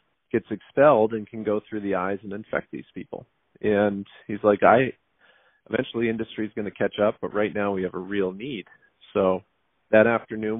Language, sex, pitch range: English, male, 100-110 Hz